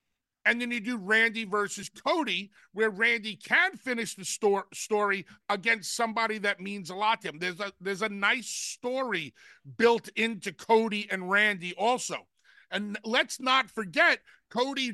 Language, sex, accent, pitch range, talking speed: English, male, American, 195-250 Hz, 155 wpm